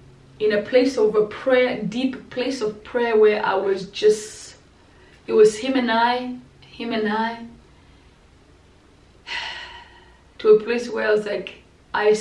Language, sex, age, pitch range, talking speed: English, female, 20-39, 220-370 Hz, 145 wpm